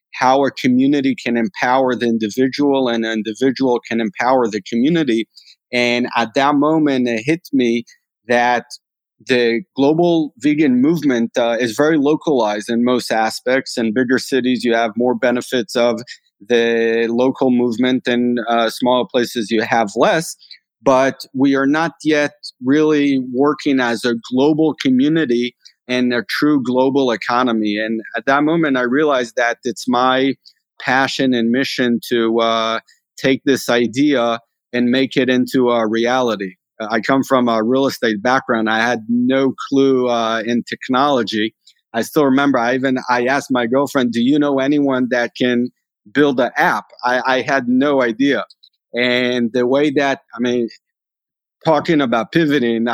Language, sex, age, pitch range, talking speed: English, male, 40-59, 115-135 Hz, 155 wpm